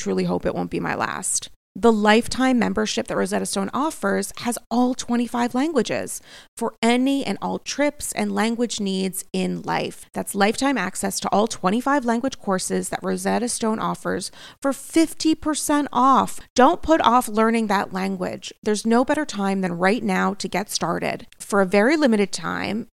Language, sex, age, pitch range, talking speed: English, female, 30-49, 195-255 Hz, 165 wpm